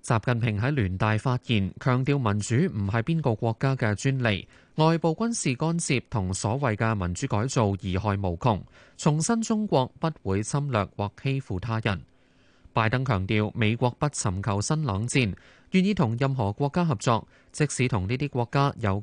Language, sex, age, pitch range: Chinese, male, 20-39, 105-140 Hz